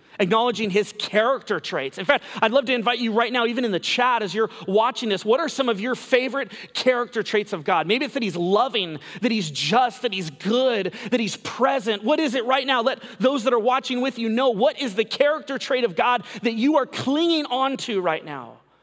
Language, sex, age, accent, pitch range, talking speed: English, male, 30-49, American, 160-245 Hz, 230 wpm